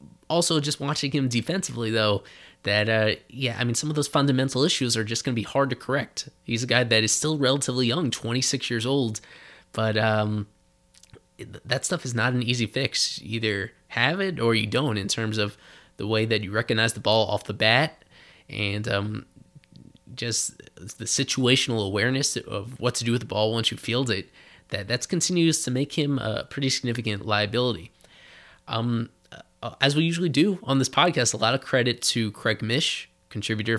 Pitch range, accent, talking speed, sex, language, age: 110-135 Hz, American, 190 wpm, male, English, 20-39